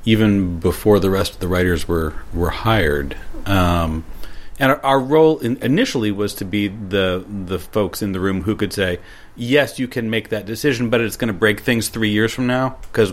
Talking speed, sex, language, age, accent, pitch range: 210 wpm, male, German, 40-59, American, 95-115 Hz